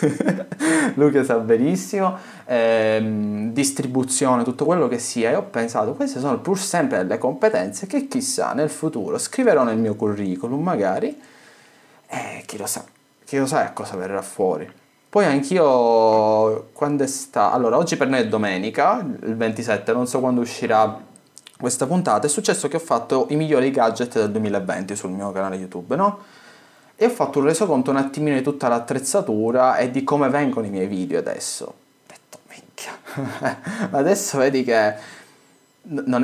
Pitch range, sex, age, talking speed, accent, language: 110-150 Hz, male, 20-39, 160 wpm, native, Italian